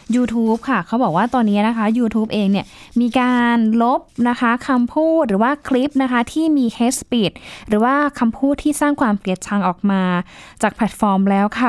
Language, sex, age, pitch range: Thai, female, 10-29, 195-255 Hz